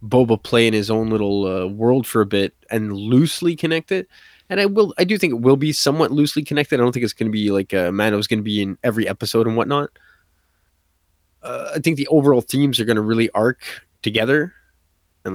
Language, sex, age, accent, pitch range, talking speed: English, male, 20-39, American, 100-130 Hz, 220 wpm